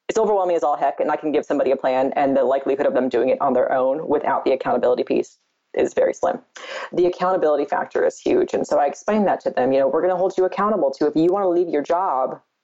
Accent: American